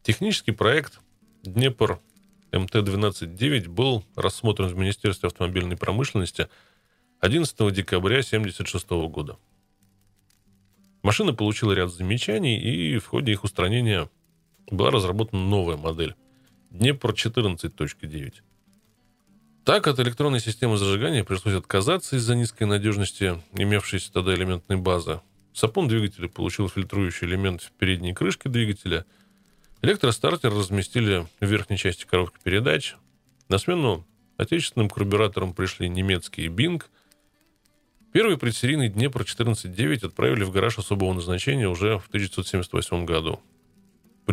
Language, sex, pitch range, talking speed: Russian, male, 90-115 Hz, 110 wpm